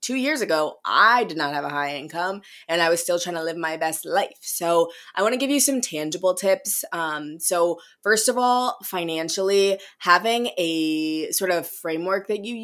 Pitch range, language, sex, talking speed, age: 160-205 Hz, English, female, 200 wpm, 20-39